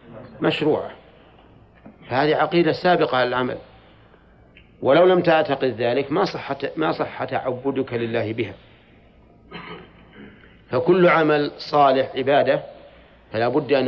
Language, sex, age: Arabic, male, 40-59